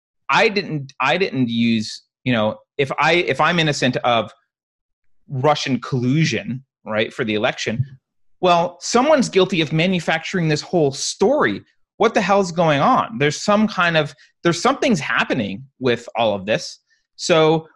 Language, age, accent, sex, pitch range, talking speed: English, 30-49, American, male, 115-175 Hz, 150 wpm